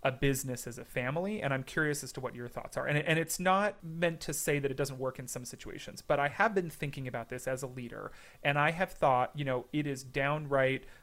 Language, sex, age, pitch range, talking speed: English, male, 30-49, 130-155 Hz, 255 wpm